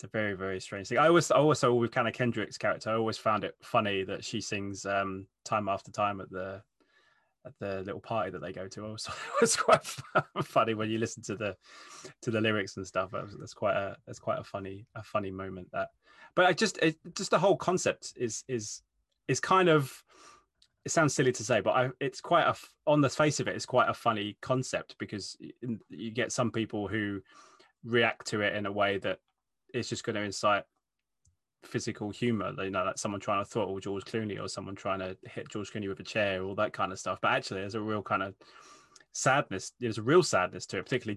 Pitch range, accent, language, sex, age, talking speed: 100-125 Hz, British, English, male, 20-39, 225 wpm